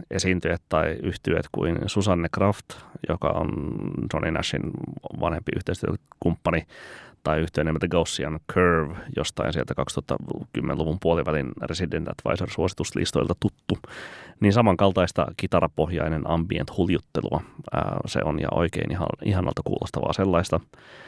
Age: 30-49